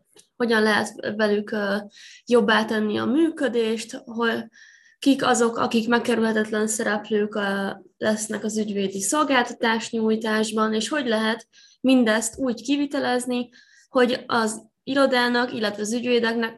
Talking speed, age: 110 wpm, 20-39